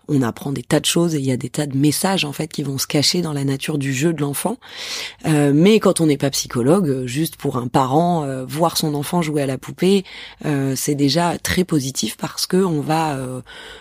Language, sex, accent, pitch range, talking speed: French, female, French, 140-170 Hz, 245 wpm